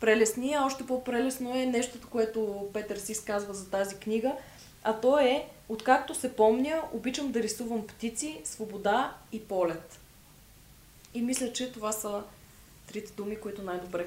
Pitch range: 205-255 Hz